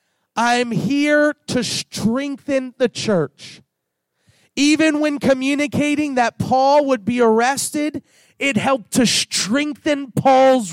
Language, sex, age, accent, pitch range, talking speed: English, male, 30-49, American, 185-260 Hz, 105 wpm